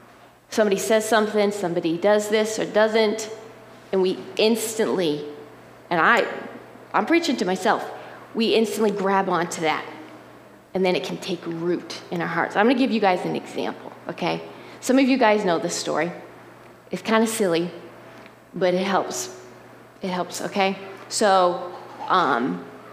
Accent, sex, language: American, female, English